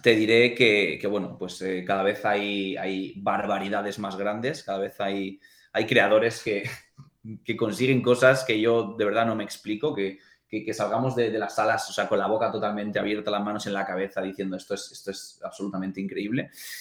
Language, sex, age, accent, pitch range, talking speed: Spanish, male, 20-39, Spanish, 100-110 Hz, 205 wpm